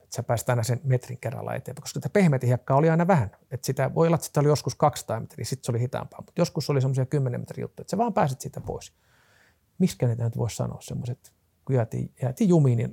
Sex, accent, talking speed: male, native, 235 wpm